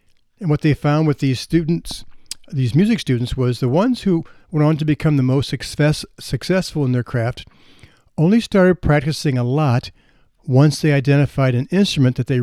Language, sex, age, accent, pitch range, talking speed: English, male, 60-79, American, 125-155 Hz, 180 wpm